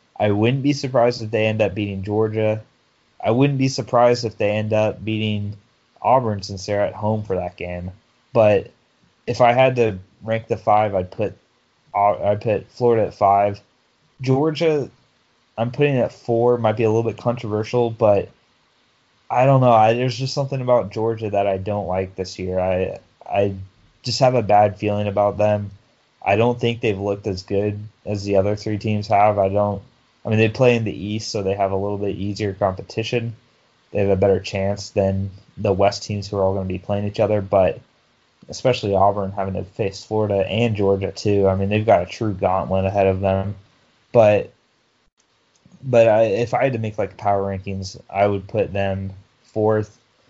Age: 20-39